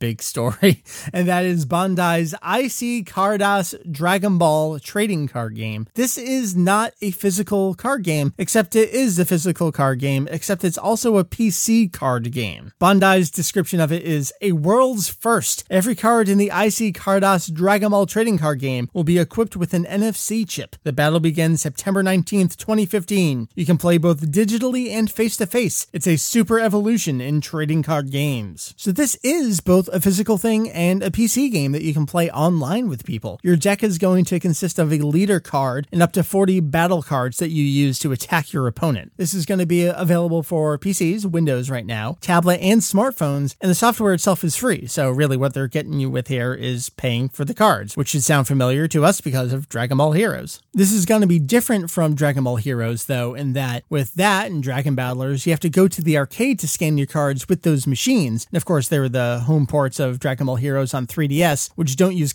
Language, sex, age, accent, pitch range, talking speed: English, male, 30-49, American, 145-195 Hz, 205 wpm